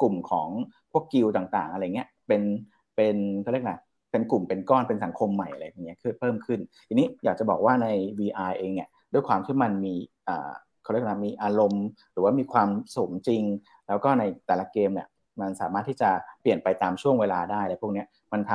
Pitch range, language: 95-120 Hz, Thai